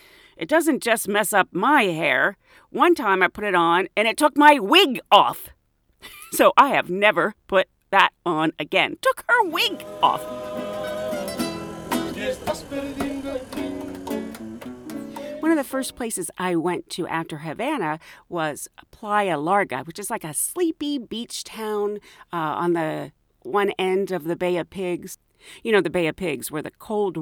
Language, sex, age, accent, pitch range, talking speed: English, female, 40-59, American, 170-275 Hz, 155 wpm